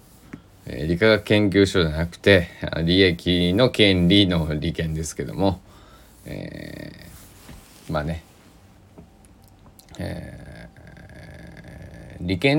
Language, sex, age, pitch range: Japanese, male, 20-39, 80-95 Hz